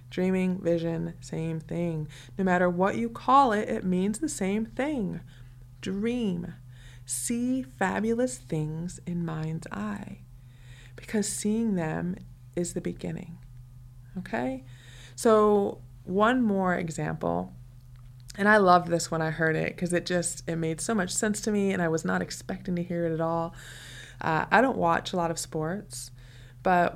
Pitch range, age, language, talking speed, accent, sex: 125-180 Hz, 20-39, English, 155 wpm, American, female